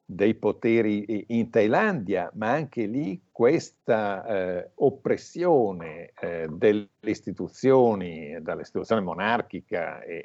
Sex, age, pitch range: male, 50-69, 100-125 Hz